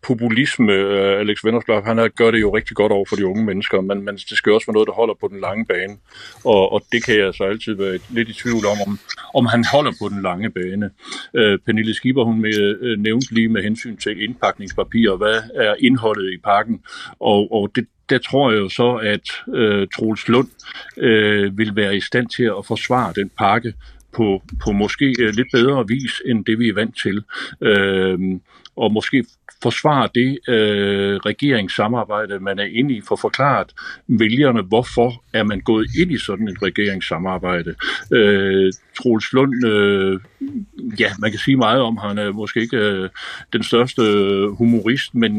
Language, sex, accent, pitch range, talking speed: Danish, male, native, 100-120 Hz, 190 wpm